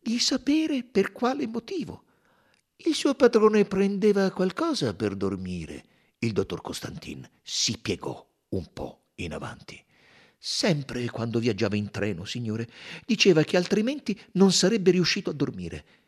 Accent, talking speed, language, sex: native, 130 wpm, Italian, male